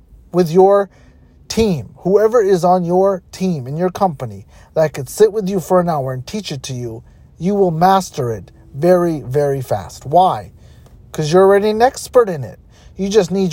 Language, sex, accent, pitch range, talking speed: English, male, American, 140-185 Hz, 185 wpm